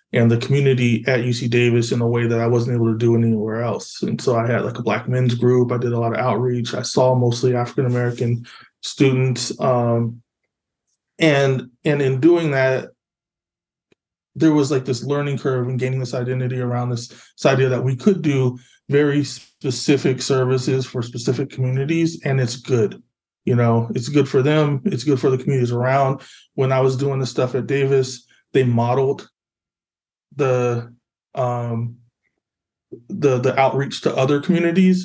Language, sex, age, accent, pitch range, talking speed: English, male, 20-39, American, 120-135 Hz, 170 wpm